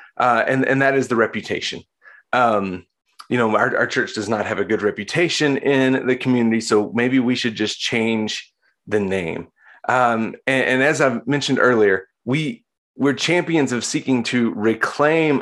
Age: 30-49